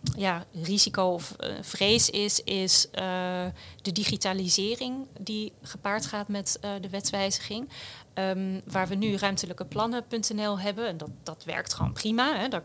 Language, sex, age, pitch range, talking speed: Dutch, female, 30-49, 185-215 Hz, 145 wpm